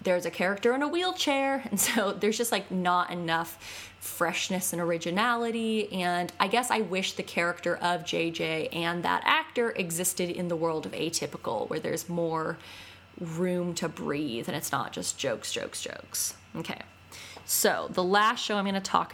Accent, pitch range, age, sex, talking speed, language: American, 175-230 Hz, 20-39, female, 175 wpm, English